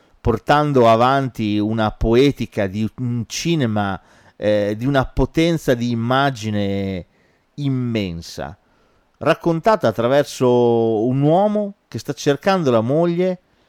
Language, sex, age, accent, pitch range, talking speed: Italian, male, 40-59, native, 110-145 Hz, 100 wpm